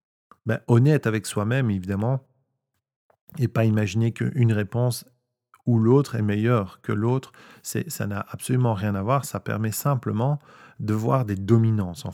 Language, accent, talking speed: French, French, 155 wpm